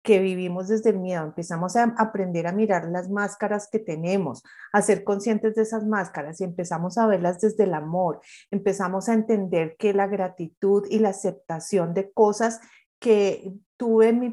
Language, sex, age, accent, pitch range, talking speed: Spanish, female, 30-49, Colombian, 195-225 Hz, 175 wpm